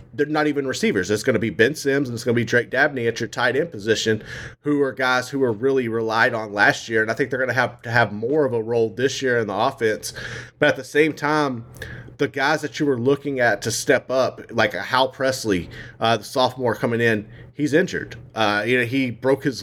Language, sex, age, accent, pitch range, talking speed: English, male, 30-49, American, 115-140 Hz, 250 wpm